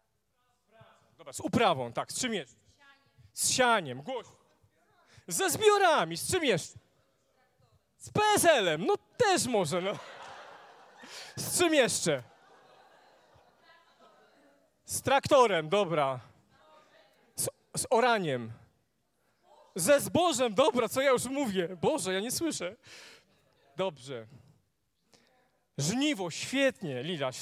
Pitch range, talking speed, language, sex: 170-260 Hz, 95 wpm, Polish, male